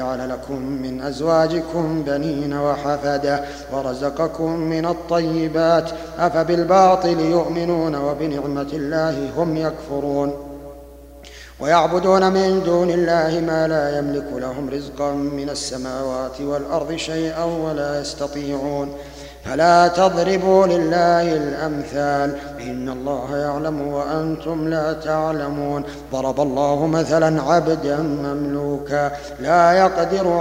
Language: Arabic